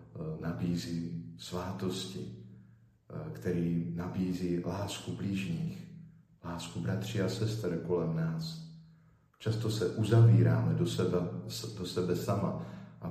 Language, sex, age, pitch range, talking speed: Slovak, male, 50-69, 85-115 Hz, 95 wpm